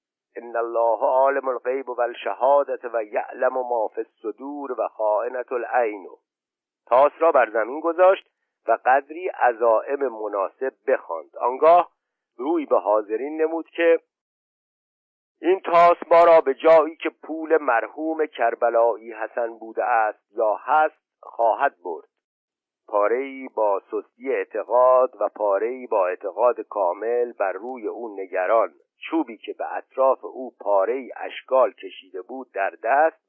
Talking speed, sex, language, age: 125 wpm, male, Persian, 50-69